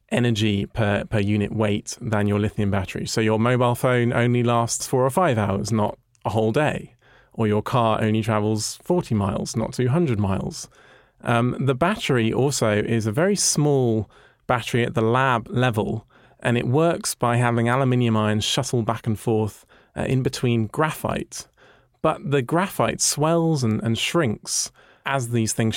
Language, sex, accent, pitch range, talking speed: English, male, British, 110-145 Hz, 165 wpm